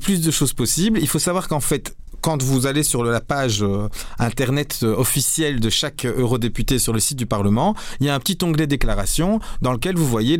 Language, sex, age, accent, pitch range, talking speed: French, male, 40-59, French, 120-160 Hz, 210 wpm